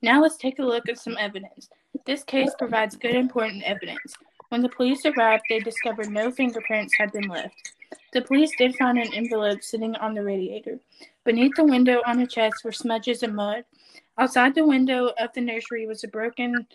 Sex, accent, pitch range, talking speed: female, American, 215-250 Hz, 195 wpm